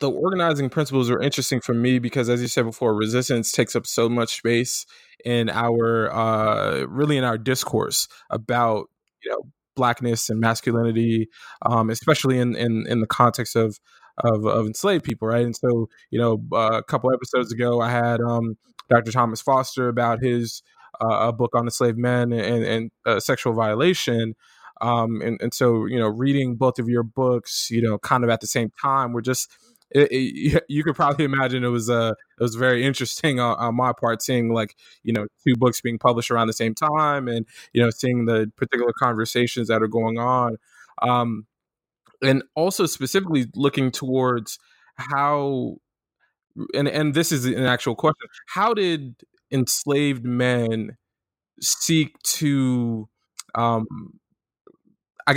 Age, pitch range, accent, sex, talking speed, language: 20-39, 115-130 Hz, American, male, 170 wpm, English